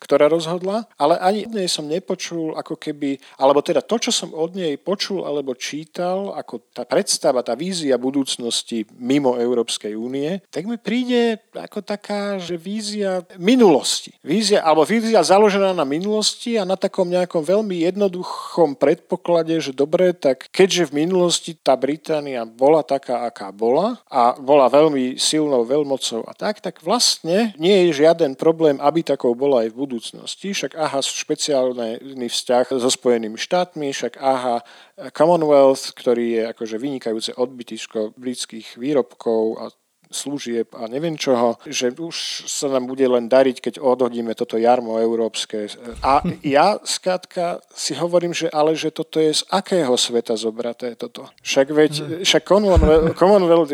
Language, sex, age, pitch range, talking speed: Slovak, male, 50-69, 125-180 Hz, 150 wpm